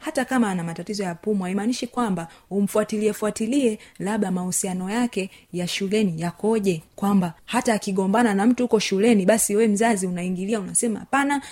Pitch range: 180-225 Hz